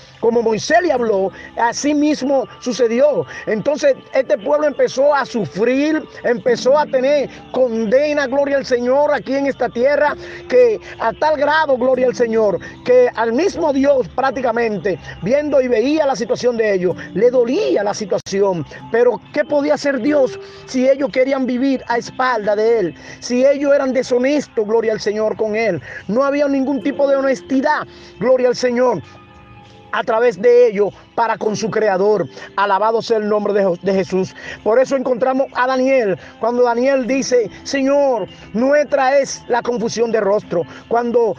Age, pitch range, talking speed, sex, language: 40-59, 225-280 Hz, 160 wpm, male, Spanish